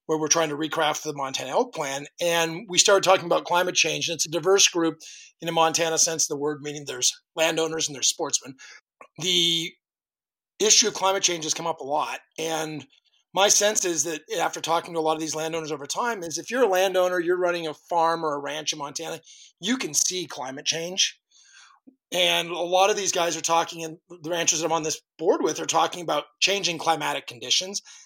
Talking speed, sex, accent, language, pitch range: 215 wpm, male, American, English, 155-190 Hz